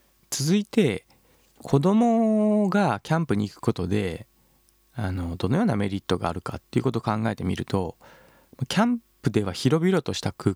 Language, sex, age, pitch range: Japanese, male, 20-39, 105-145 Hz